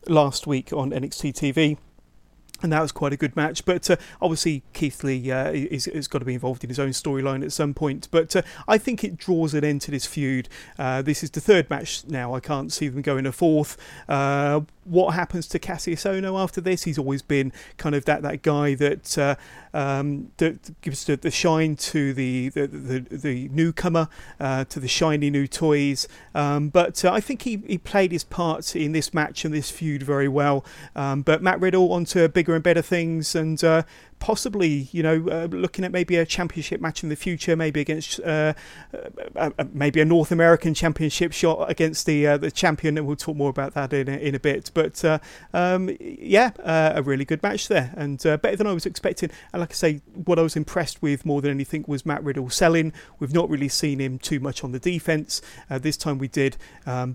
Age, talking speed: 40-59, 220 wpm